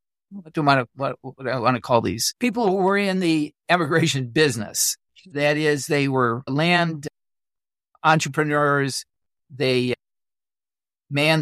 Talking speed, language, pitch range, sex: 140 wpm, English, 140-185 Hz, male